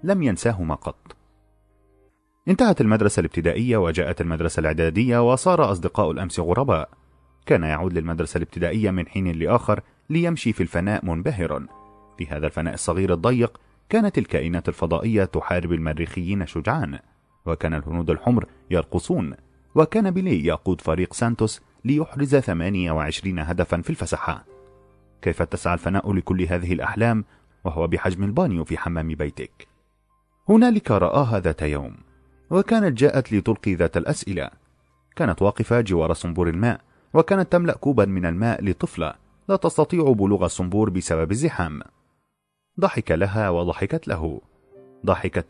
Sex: male